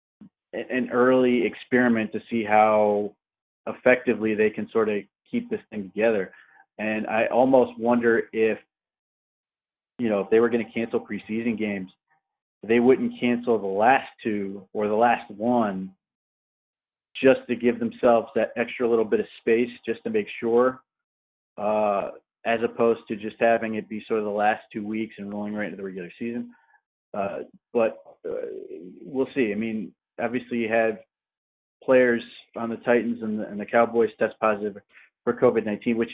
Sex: male